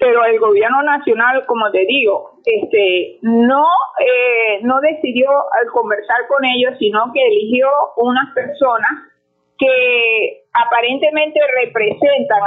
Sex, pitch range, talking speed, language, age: female, 230-305 Hz, 115 wpm, Spanish, 40-59